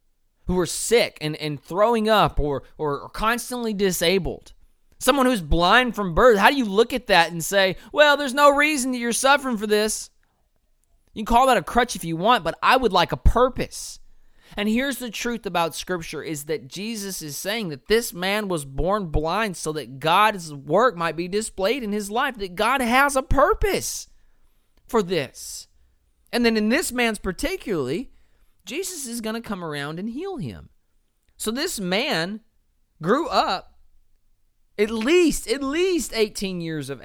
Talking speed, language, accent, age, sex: 180 wpm, English, American, 30-49, male